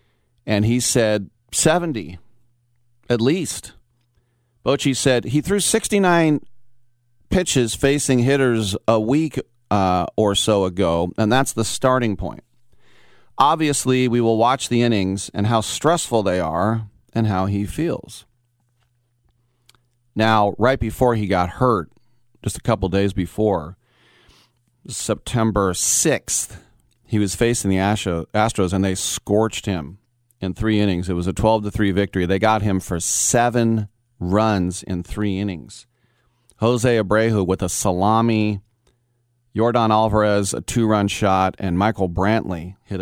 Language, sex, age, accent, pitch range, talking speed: English, male, 40-59, American, 95-120 Hz, 130 wpm